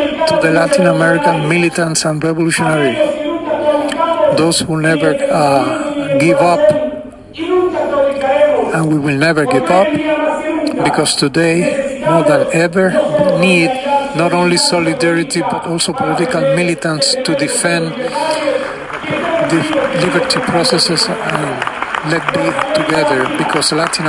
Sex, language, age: male, English, 50-69